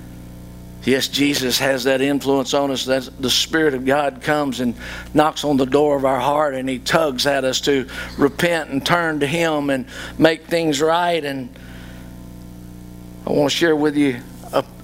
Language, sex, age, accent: English, male, 50-69, American